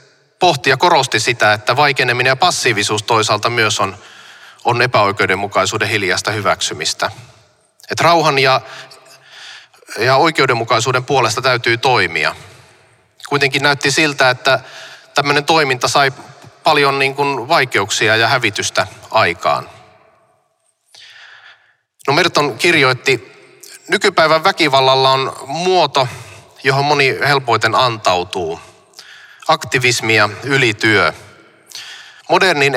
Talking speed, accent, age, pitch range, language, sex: 95 wpm, native, 30-49, 125-145 Hz, Finnish, male